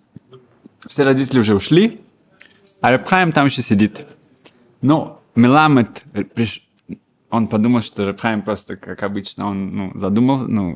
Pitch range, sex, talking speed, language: 105-140 Hz, male, 125 wpm, Russian